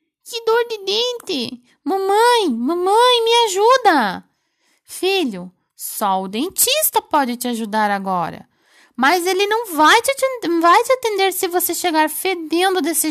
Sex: female